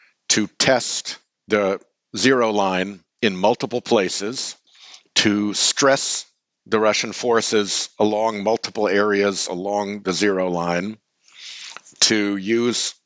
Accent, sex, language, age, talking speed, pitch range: American, male, English, 60-79, 100 wpm, 95-110 Hz